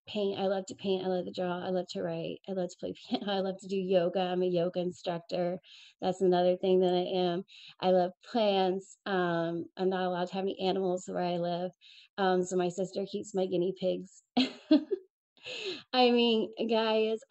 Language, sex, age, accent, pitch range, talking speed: English, female, 30-49, American, 185-225 Hz, 200 wpm